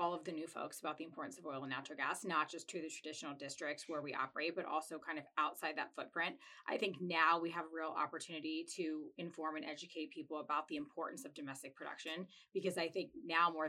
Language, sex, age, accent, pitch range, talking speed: English, female, 30-49, American, 150-175 Hz, 230 wpm